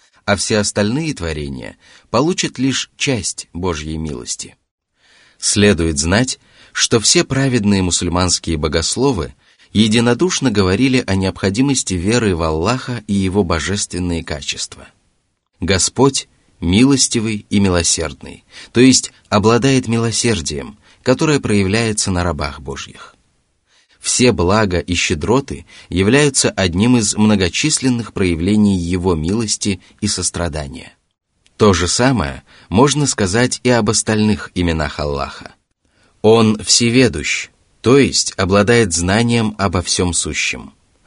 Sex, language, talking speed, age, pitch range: male, Russian, 105 wpm, 30-49, 90-125 Hz